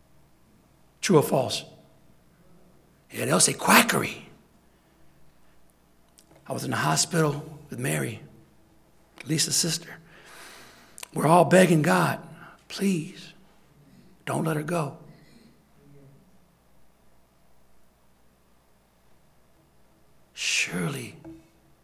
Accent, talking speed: American, 70 wpm